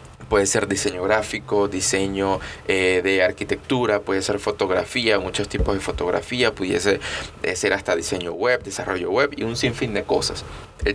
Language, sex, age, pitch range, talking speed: Spanish, male, 20-39, 95-120 Hz, 160 wpm